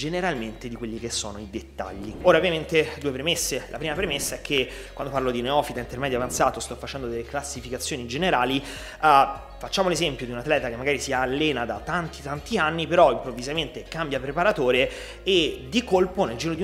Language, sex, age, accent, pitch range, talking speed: Italian, male, 30-49, native, 120-155 Hz, 180 wpm